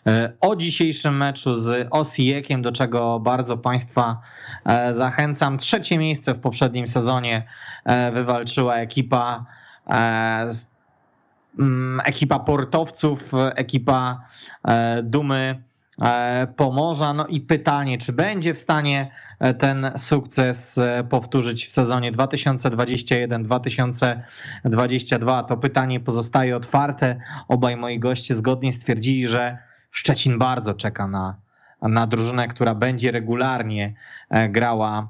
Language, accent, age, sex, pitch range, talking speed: Polish, native, 20-39, male, 120-135 Hz, 95 wpm